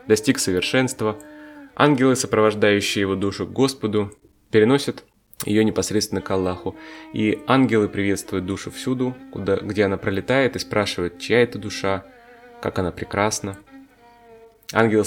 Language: Russian